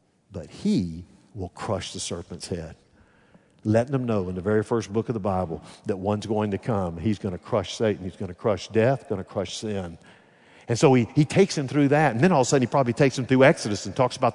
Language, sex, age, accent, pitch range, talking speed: English, male, 50-69, American, 115-150 Hz, 250 wpm